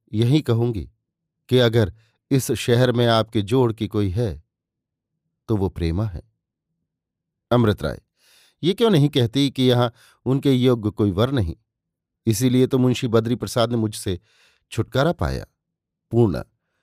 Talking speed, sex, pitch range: 140 wpm, male, 110-145 Hz